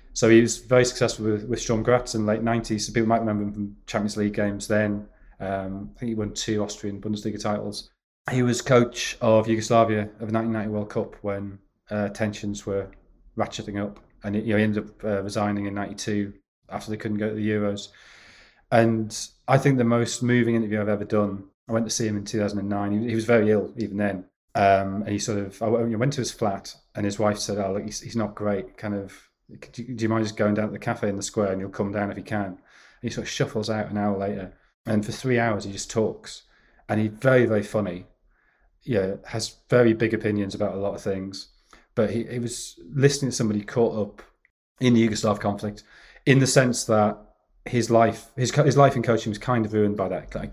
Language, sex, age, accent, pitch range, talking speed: English, male, 30-49, British, 100-115 Hz, 225 wpm